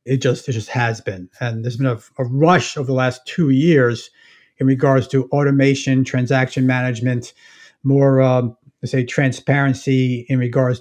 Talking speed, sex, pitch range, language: 165 wpm, male, 125-145 Hz, English